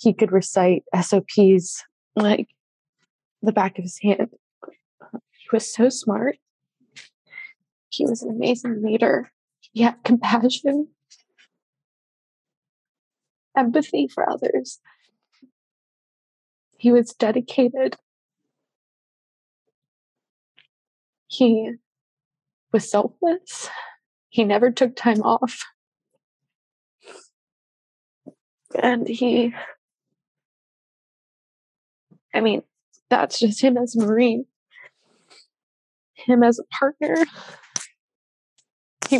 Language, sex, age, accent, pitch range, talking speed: English, female, 20-39, American, 215-265 Hz, 80 wpm